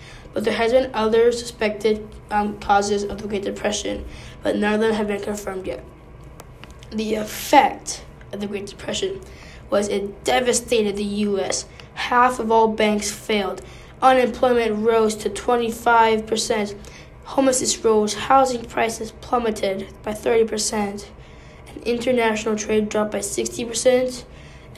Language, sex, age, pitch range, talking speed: English, female, 10-29, 210-240 Hz, 130 wpm